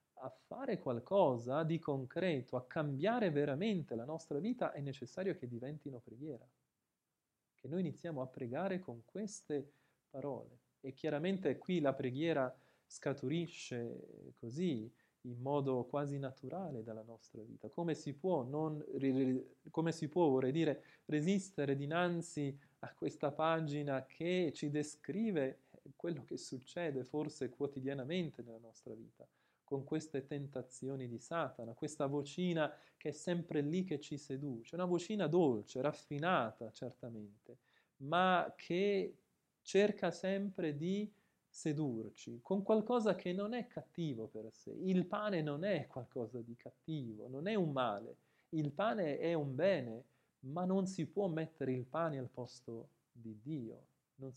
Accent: Italian